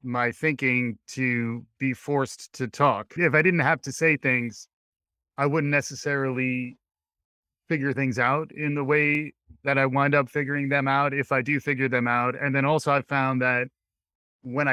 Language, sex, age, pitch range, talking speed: English, male, 30-49, 115-140 Hz, 175 wpm